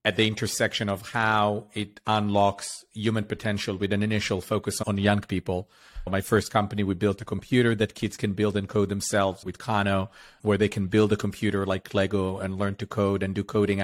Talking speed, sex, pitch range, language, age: 205 wpm, male, 100-110 Hz, English, 40-59